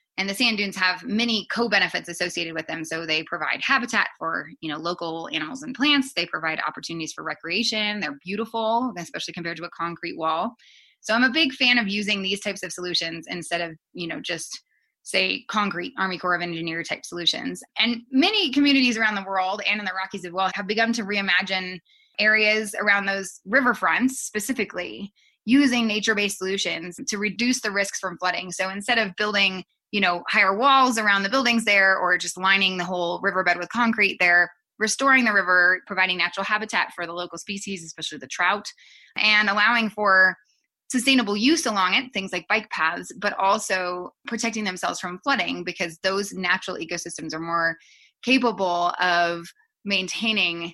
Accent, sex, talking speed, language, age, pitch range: American, female, 175 wpm, English, 20-39, 175-225 Hz